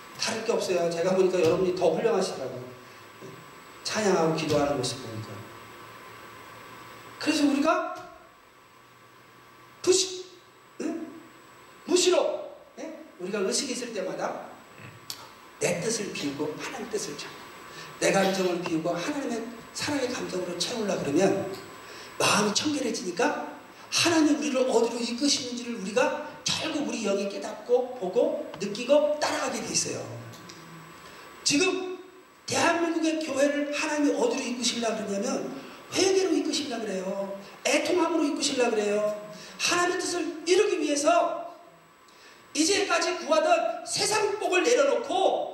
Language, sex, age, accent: Korean, male, 40-59, native